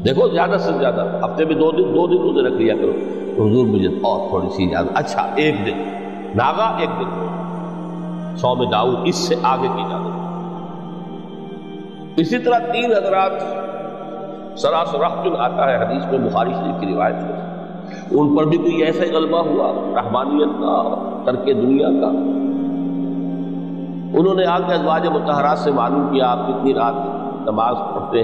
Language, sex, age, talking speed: Urdu, male, 60-79, 160 wpm